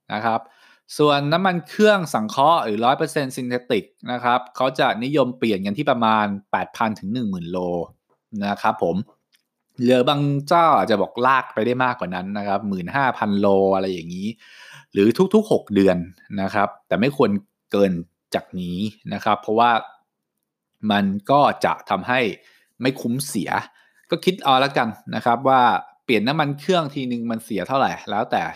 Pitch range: 100-140 Hz